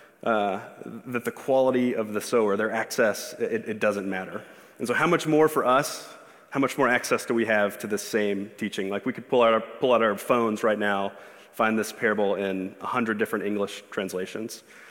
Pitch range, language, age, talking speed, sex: 105-130 Hz, English, 30-49, 195 wpm, male